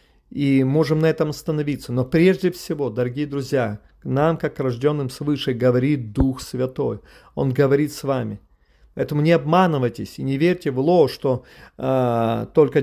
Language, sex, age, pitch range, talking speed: Russian, male, 40-59, 135-175 Hz, 160 wpm